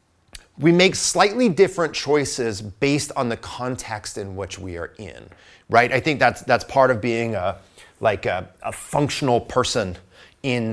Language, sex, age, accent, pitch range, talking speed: English, male, 30-49, American, 115-150 Hz, 160 wpm